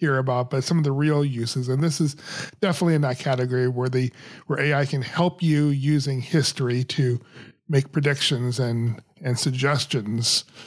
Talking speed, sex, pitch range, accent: 170 wpm, male, 130-170 Hz, American